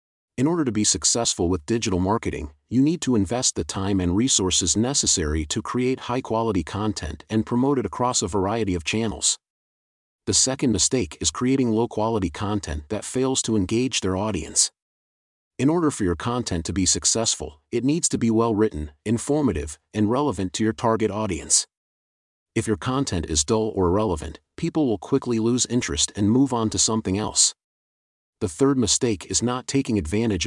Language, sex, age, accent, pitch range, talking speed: English, male, 40-59, American, 90-115 Hz, 170 wpm